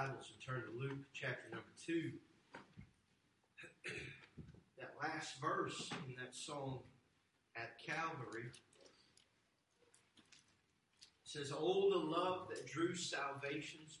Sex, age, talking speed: male, 40-59, 95 wpm